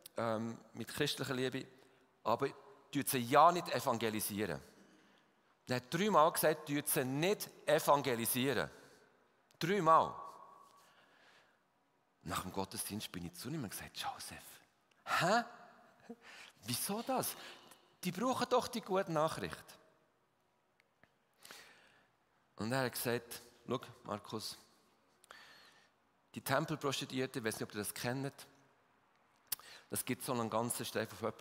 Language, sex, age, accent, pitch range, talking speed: German, male, 40-59, German, 105-135 Hz, 110 wpm